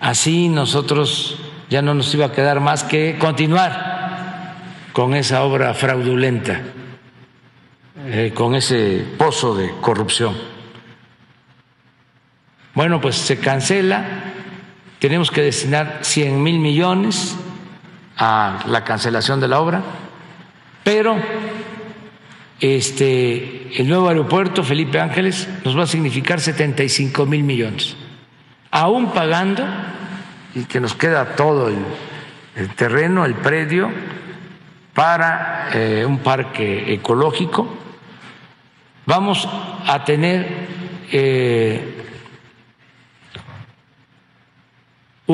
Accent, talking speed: Mexican, 95 wpm